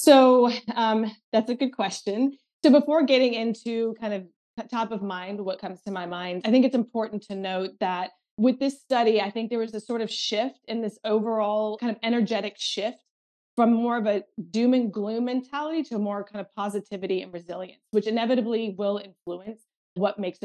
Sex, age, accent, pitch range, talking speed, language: female, 20-39, American, 190-230 Hz, 195 wpm, English